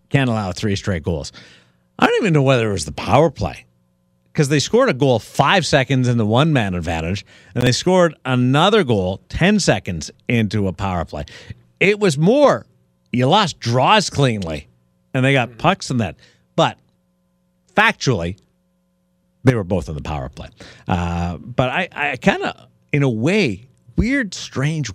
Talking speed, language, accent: 170 wpm, English, American